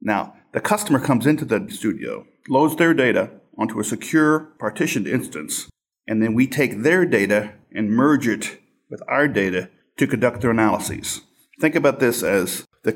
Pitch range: 110-130 Hz